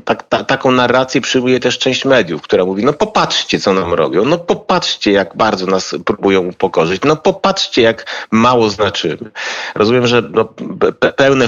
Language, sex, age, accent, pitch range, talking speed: Polish, male, 40-59, native, 105-135 Hz, 165 wpm